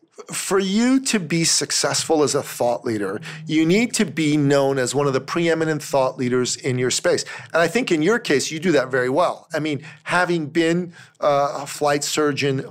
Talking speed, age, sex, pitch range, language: 200 wpm, 40-59, male, 145-195 Hz, English